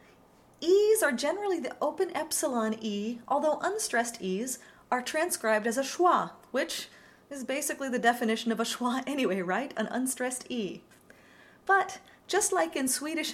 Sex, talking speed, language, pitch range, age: female, 150 wpm, English, 235-310 Hz, 30-49